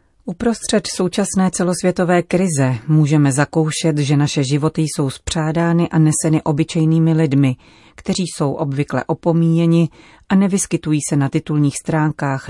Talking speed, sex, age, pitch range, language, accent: 120 wpm, female, 30-49, 145-170 Hz, Czech, native